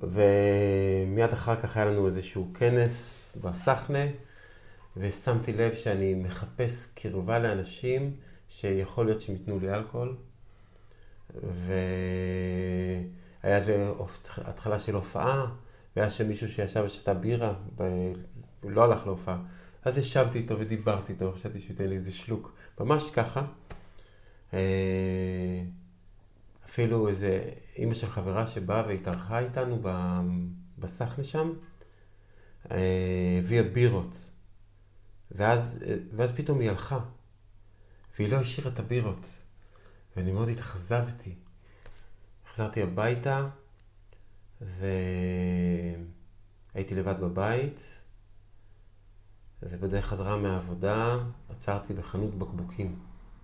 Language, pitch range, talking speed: Hebrew, 95-115 Hz, 95 wpm